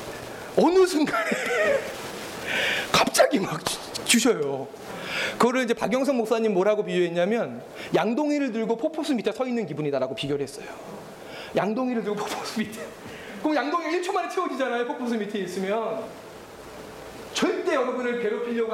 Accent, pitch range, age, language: native, 195-260 Hz, 30-49, Korean